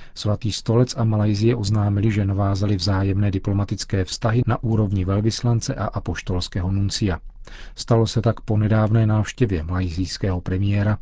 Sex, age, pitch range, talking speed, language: male, 40-59, 95-115 Hz, 130 wpm, Czech